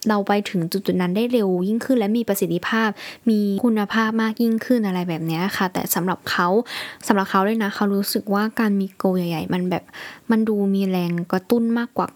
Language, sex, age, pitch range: Thai, female, 10-29, 185-225 Hz